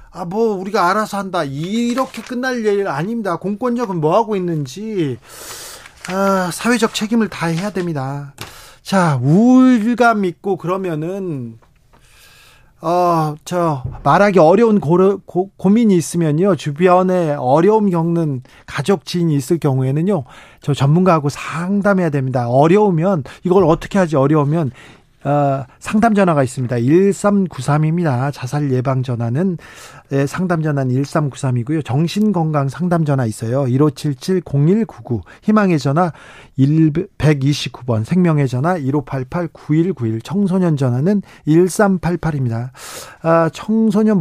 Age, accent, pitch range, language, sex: 40-59, native, 140-190 Hz, Korean, male